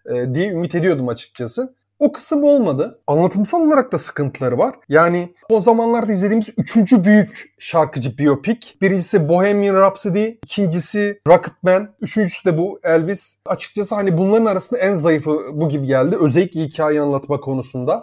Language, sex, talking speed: Turkish, male, 140 wpm